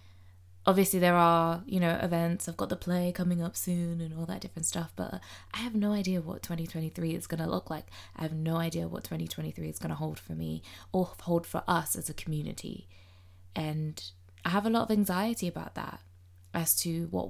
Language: English